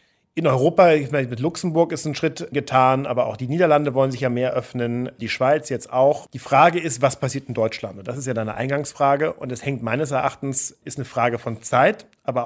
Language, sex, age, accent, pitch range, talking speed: English, male, 40-59, German, 125-145 Hz, 230 wpm